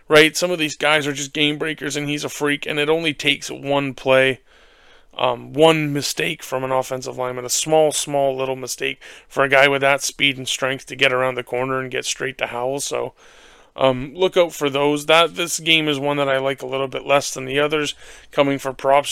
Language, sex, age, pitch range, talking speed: English, male, 30-49, 135-155 Hz, 230 wpm